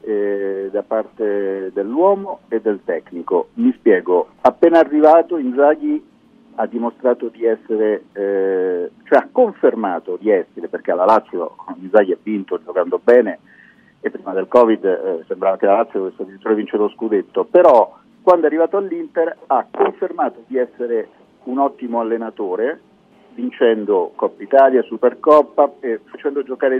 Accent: native